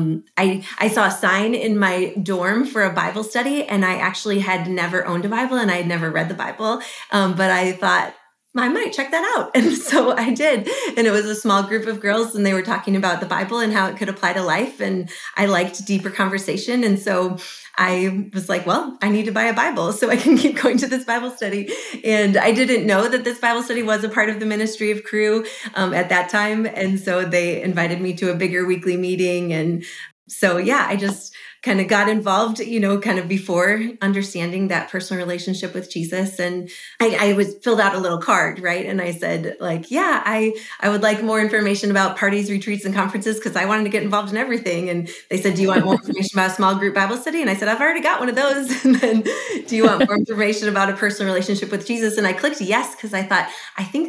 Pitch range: 185-225 Hz